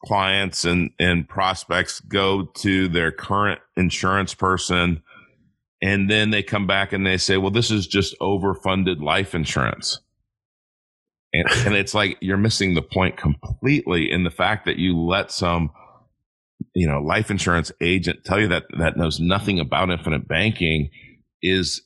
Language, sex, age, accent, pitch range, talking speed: English, male, 40-59, American, 85-100 Hz, 155 wpm